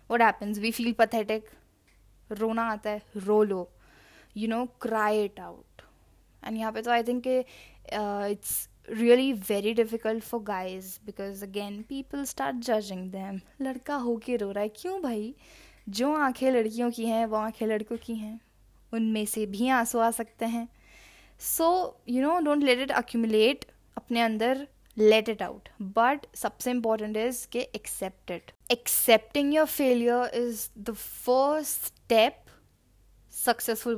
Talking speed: 150 wpm